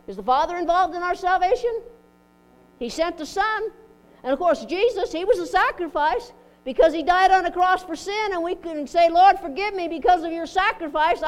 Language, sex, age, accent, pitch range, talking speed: English, female, 60-79, American, 225-360 Hz, 200 wpm